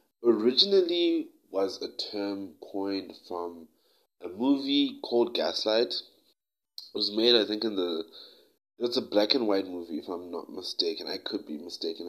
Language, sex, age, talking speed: English, male, 20-39, 155 wpm